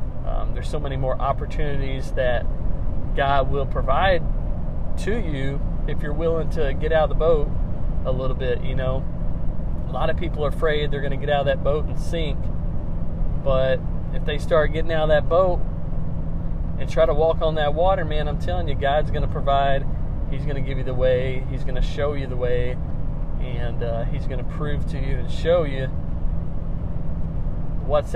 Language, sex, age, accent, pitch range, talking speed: English, male, 40-59, American, 120-155 Hz, 195 wpm